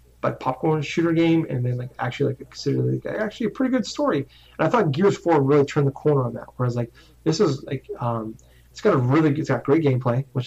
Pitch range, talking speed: 120-140 Hz, 245 wpm